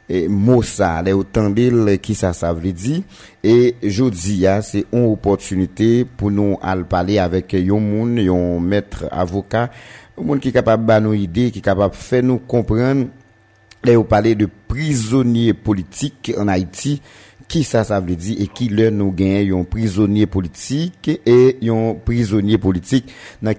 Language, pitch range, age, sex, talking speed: French, 95-115 Hz, 50-69, male, 165 wpm